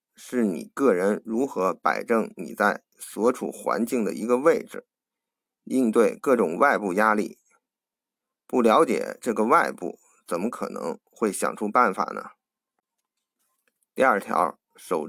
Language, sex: Chinese, male